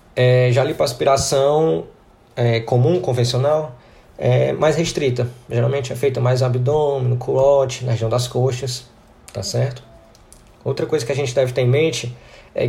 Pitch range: 120-150 Hz